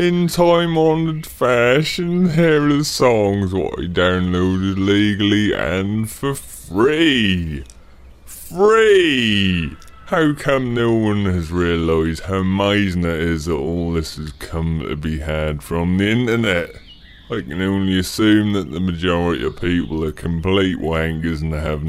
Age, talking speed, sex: 30-49, 135 wpm, female